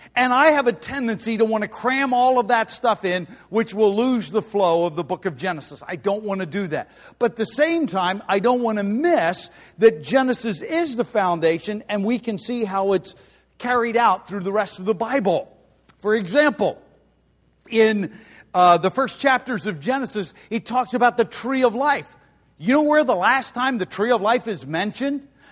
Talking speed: 205 wpm